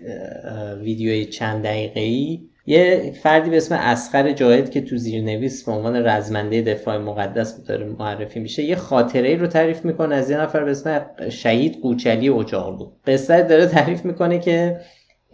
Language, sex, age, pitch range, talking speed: Persian, male, 20-39, 120-165 Hz, 155 wpm